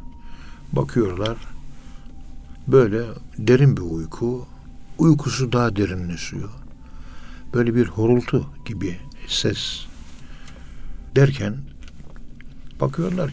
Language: Turkish